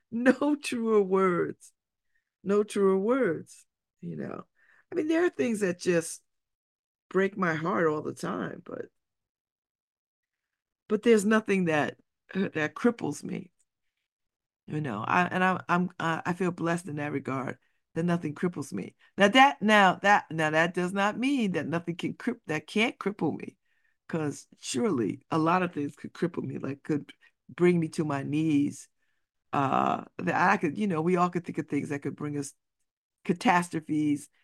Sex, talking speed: female, 165 wpm